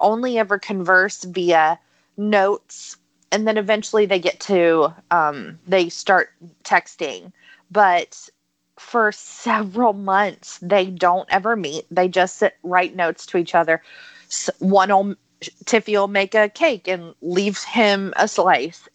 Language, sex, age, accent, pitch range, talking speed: English, female, 20-39, American, 175-210 Hz, 140 wpm